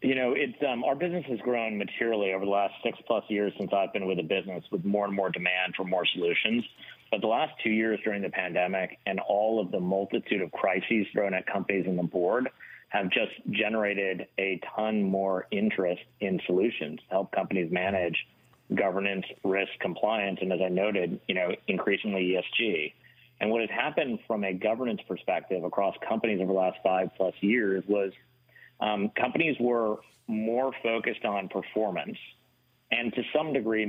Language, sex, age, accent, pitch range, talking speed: English, male, 40-59, American, 95-110 Hz, 175 wpm